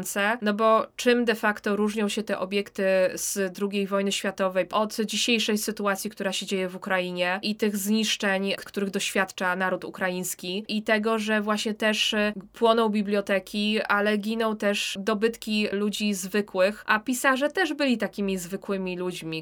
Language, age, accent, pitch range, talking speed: Polish, 20-39, native, 185-215 Hz, 150 wpm